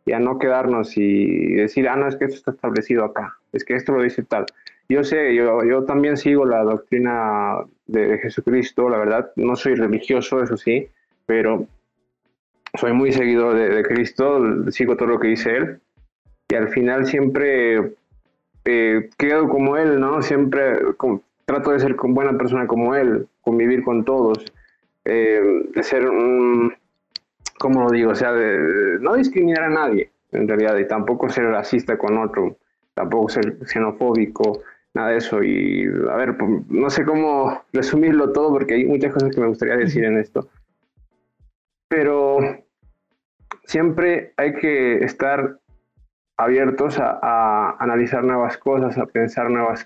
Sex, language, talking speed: male, Spanish, 160 wpm